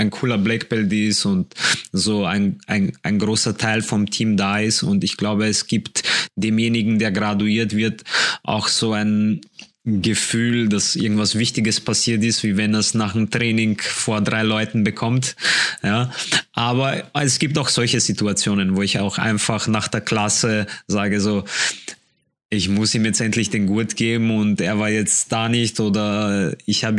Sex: male